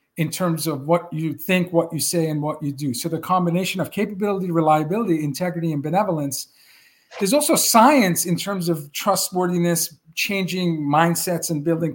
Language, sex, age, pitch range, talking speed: English, male, 50-69, 165-205 Hz, 165 wpm